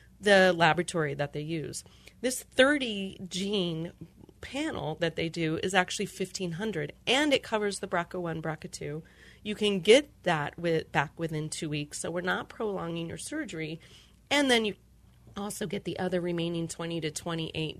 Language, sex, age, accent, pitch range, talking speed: English, female, 30-49, American, 155-195 Hz, 160 wpm